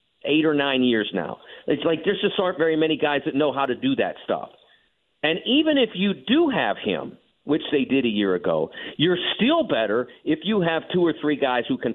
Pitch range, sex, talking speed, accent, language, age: 120-165 Hz, male, 225 wpm, American, English, 50-69